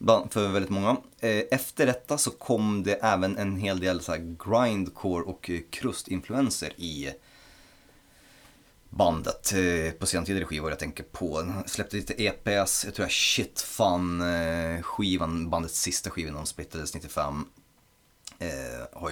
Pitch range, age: 80-100 Hz, 30-49